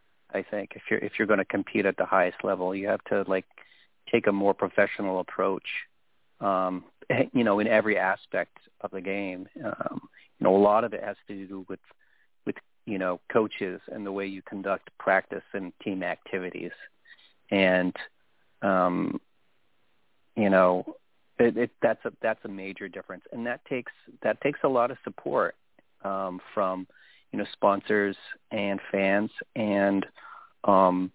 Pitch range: 95-105 Hz